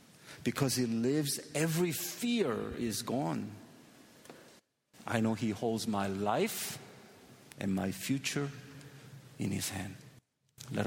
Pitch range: 110-135 Hz